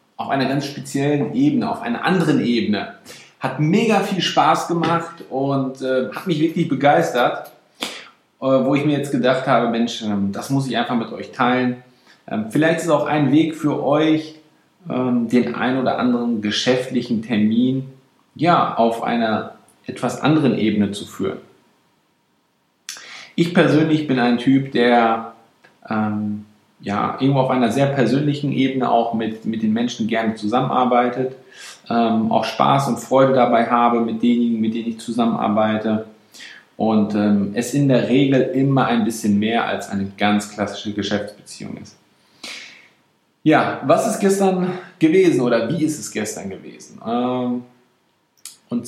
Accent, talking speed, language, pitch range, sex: German, 150 wpm, German, 115-155 Hz, male